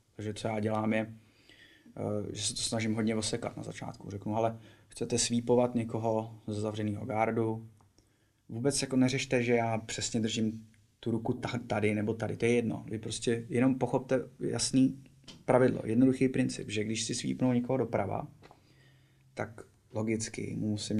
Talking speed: 150 wpm